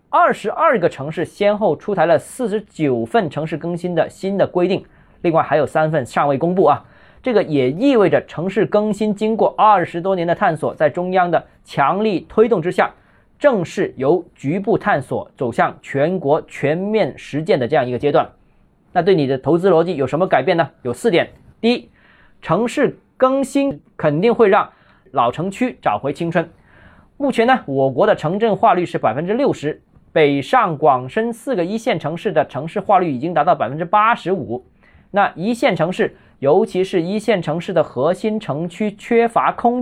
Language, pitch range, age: Chinese, 160-225 Hz, 20-39